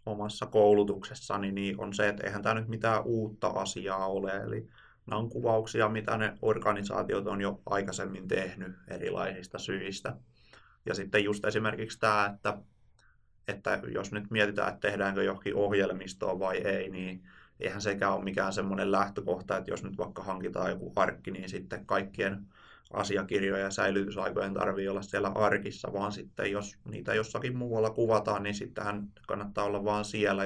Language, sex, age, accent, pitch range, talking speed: Finnish, male, 20-39, native, 100-110 Hz, 155 wpm